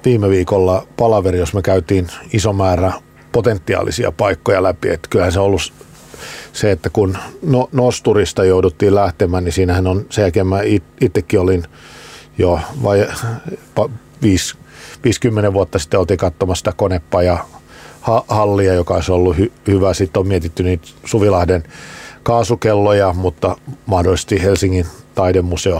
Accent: native